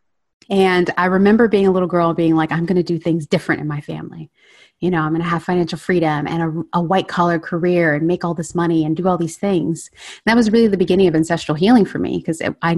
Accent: American